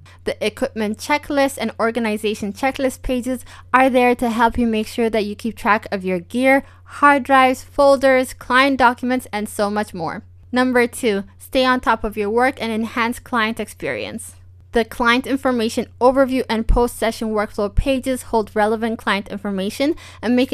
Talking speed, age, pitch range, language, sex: 165 wpm, 20-39, 210-255 Hz, English, female